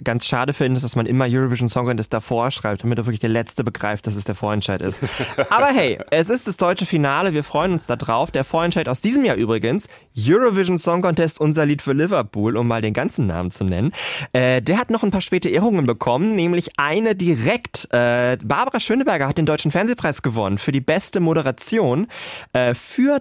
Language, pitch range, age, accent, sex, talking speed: German, 120-170 Hz, 20-39, German, male, 205 wpm